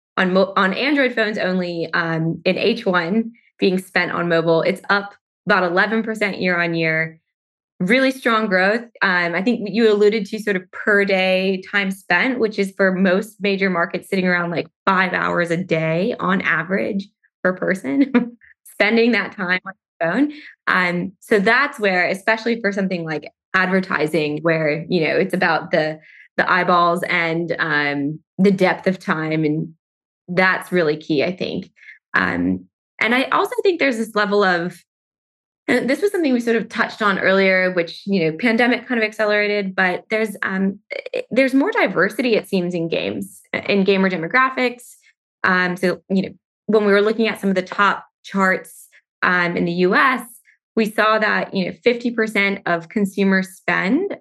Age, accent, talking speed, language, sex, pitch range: 20-39, American, 175 wpm, English, female, 175-215 Hz